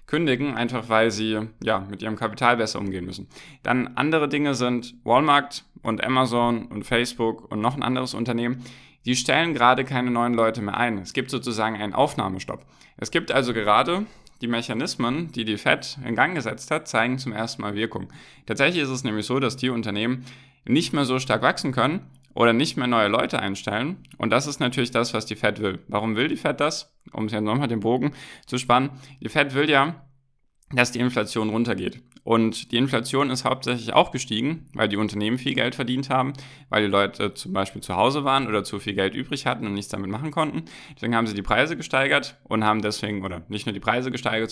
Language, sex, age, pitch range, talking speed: German, male, 10-29, 105-130 Hz, 210 wpm